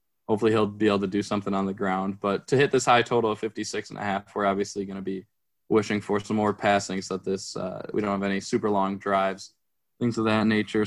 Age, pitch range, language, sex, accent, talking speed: 10-29, 105-120 Hz, English, male, American, 250 wpm